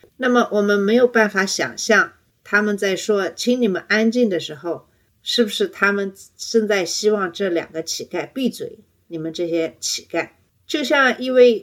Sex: female